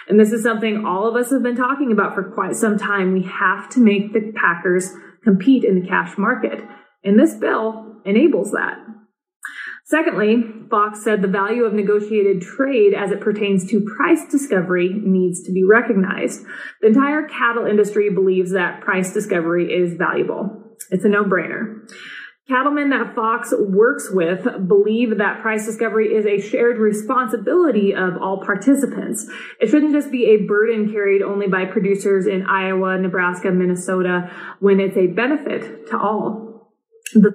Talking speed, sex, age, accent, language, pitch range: 160 wpm, female, 30-49, American, English, 195-230 Hz